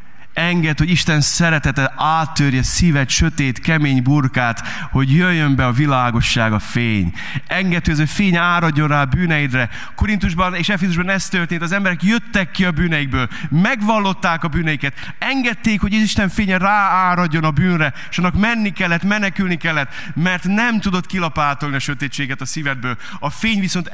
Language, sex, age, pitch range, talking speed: Hungarian, male, 30-49, 145-210 Hz, 160 wpm